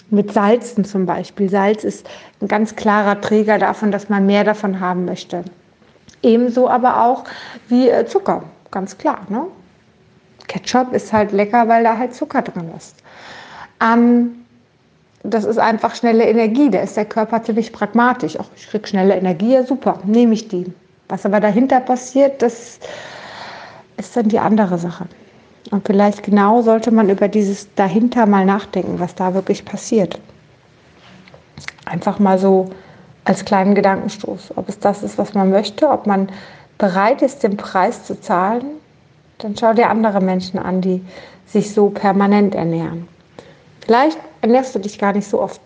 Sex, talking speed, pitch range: female, 160 wpm, 195-230 Hz